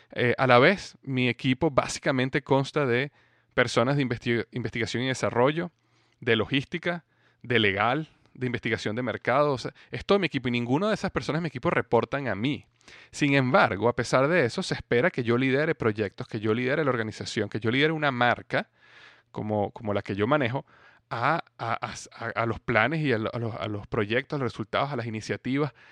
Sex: male